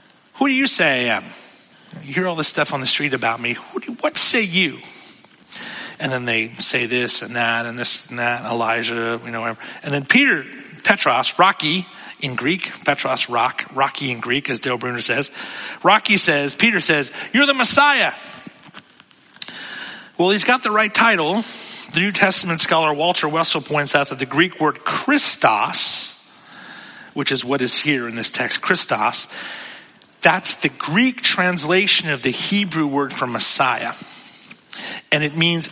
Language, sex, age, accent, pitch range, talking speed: English, male, 40-59, American, 130-185 Hz, 165 wpm